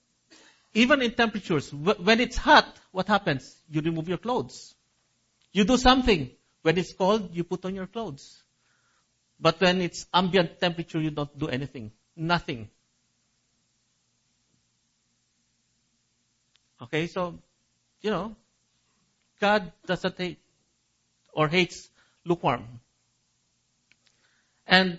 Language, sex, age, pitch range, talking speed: English, male, 50-69, 125-185 Hz, 105 wpm